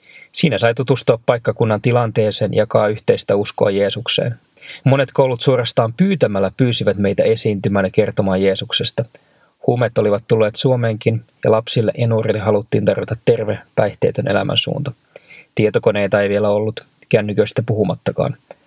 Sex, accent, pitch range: male, native, 105-125 Hz